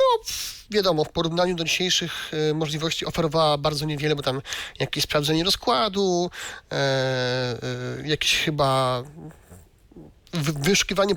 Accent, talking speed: native, 115 wpm